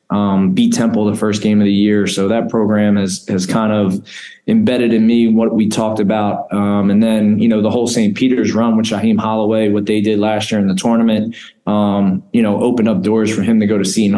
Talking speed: 235 wpm